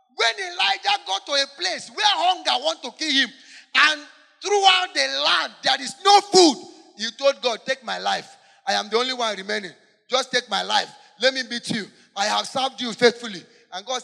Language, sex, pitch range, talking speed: English, male, 230-320 Hz, 200 wpm